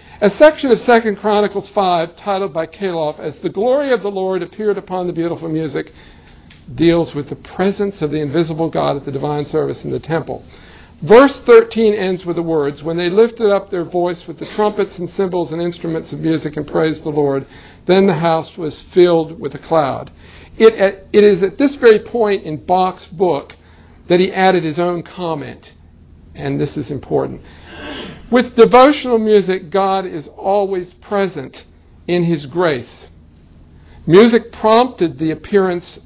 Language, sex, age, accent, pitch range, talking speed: English, male, 50-69, American, 145-195 Hz, 170 wpm